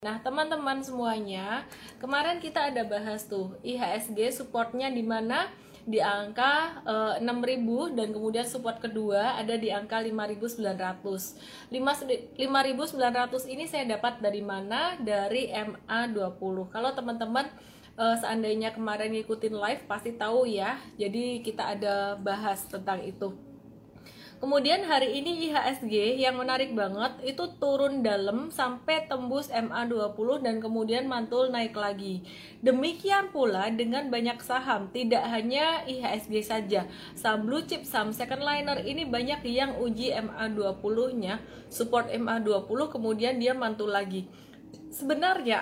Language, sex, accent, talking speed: Indonesian, female, native, 125 wpm